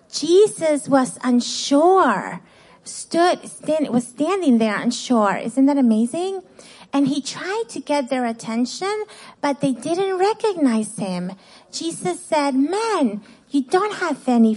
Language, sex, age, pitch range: English, female, 30-49, 240-330 Hz